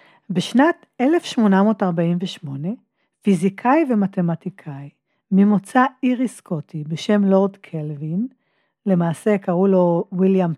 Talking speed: 80 wpm